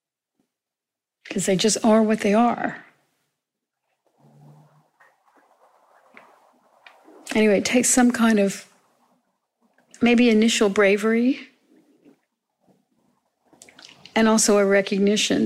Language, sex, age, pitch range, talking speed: English, female, 50-69, 195-225 Hz, 75 wpm